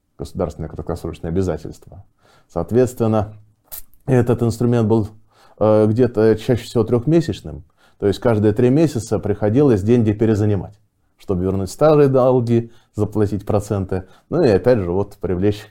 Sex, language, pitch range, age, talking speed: male, Russian, 95-120 Hz, 20-39, 120 wpm